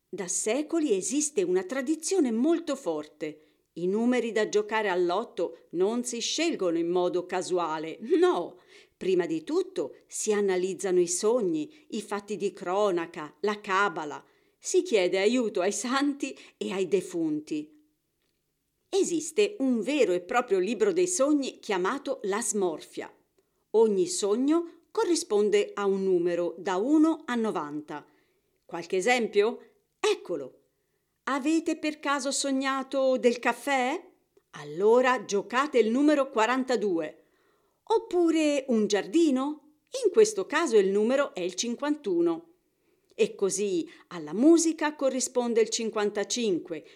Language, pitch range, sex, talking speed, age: Italian, 205-340 Hz, female, 120 wpm, 50-69